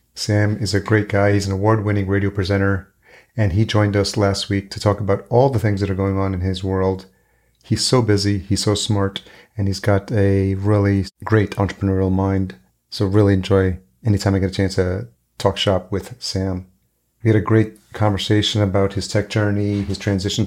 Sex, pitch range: male, 95-110 Hz